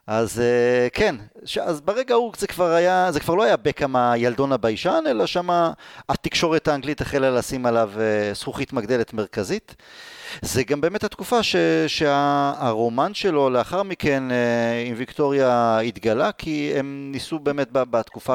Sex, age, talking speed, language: male, 30-49, 135 wpm, Hebrew